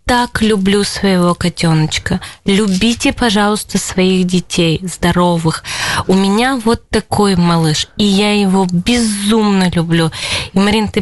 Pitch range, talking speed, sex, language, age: 175-210 Hz, 120 wpm, female, Russian, 20-39